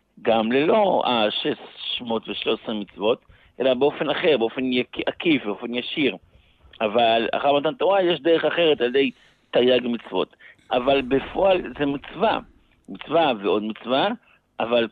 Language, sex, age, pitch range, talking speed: Hebrew, male, 60-79, 110-145 Hz, 125 wpm